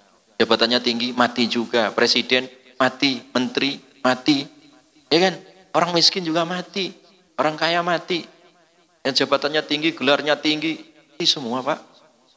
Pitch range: 120-155 Hz